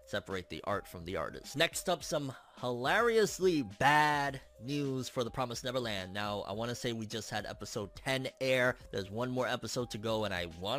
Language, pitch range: English, 120-155 Hz